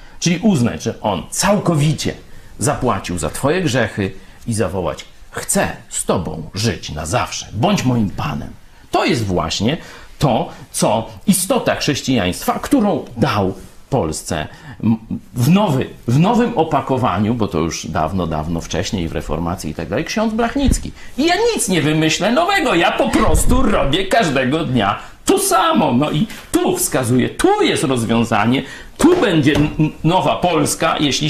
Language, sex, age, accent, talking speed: Polish, male, 50-69, native, 140 wpm